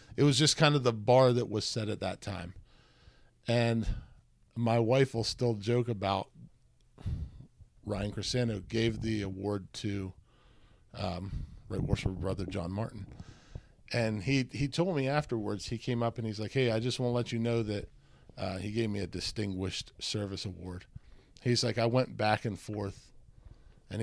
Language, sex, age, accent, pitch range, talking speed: English, male, 50-69, American, 100-125 Hz, 170 wpm